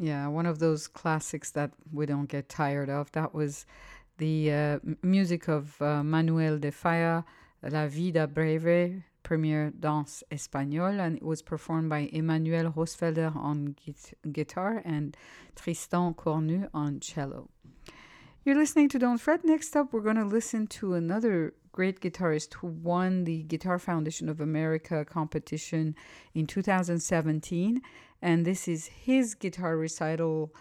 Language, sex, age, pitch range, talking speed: English, female, 50-69, 150-185 Hz, 140 wpm